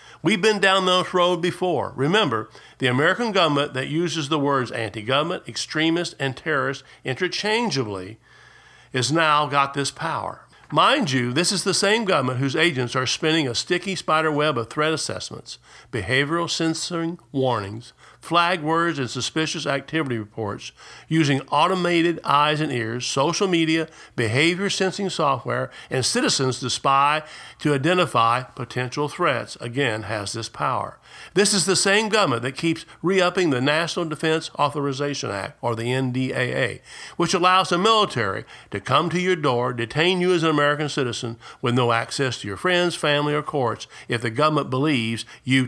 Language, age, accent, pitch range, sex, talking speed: English, 50-69, American, 125-175 Hz, male, 155 wpm